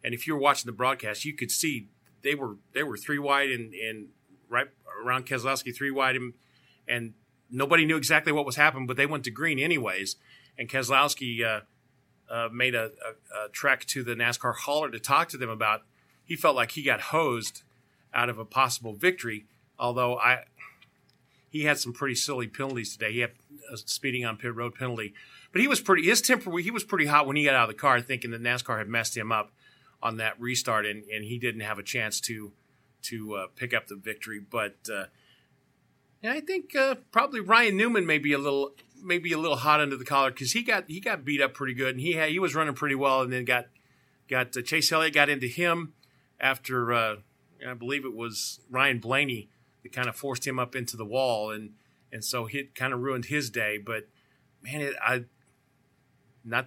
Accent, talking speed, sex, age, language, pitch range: American, 215 wpm, male, 40-59, English, 120-145 Hz